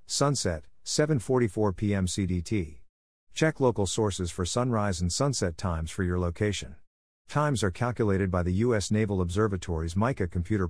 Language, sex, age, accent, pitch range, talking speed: English, male, 50-69, American, 85-115 Hz, 140 wpm